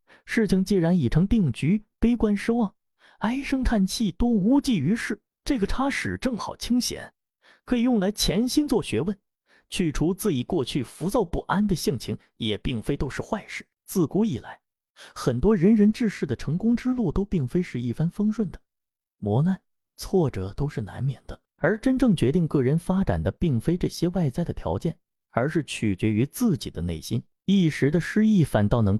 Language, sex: Chinese, male